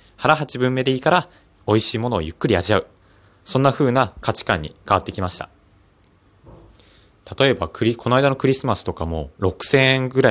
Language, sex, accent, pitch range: Japanese, male, native, 95-120 Hz